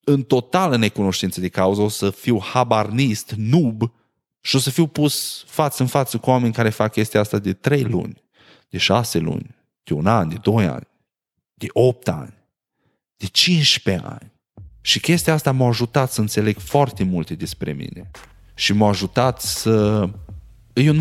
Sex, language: male, Romanian